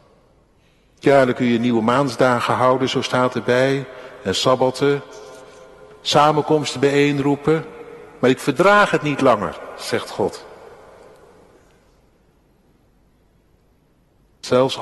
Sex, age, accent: male, 60-79, Dutch